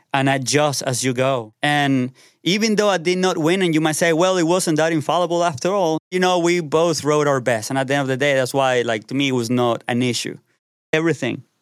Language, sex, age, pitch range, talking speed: English, male, 30-49, 125-170 Hz, 250 wpm